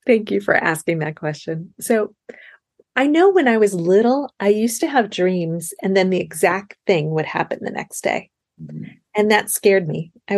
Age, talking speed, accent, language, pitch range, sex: 30-49, 190 wpm, American, English, 170-220 Hz, female